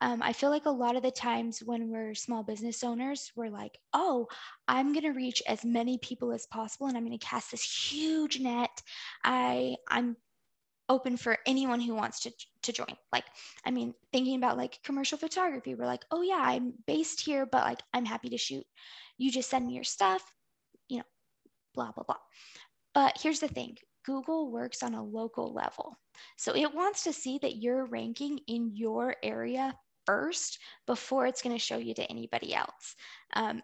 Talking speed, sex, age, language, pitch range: 195 wpm, female, 20-39, English, 230-275 Hz